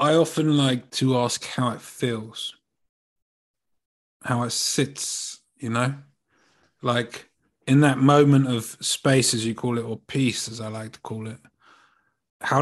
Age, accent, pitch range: 20-39, British, 120-145 Hz